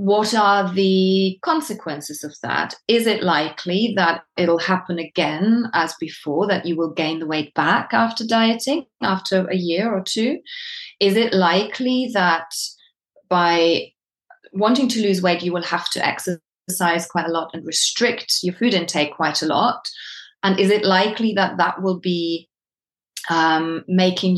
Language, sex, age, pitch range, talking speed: English, female, 30-49, 170-225 Hz, 160 wpm